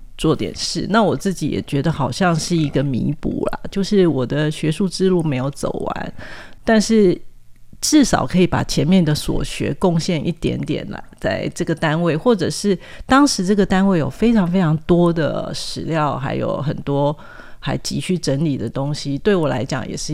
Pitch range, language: 145-180 Hz, Chinese